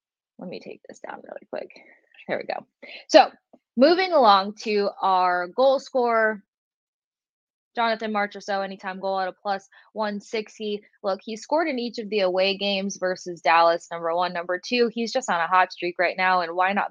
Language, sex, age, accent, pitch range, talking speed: English, female, 20-39, American, 180-215 Hz, 190 wpm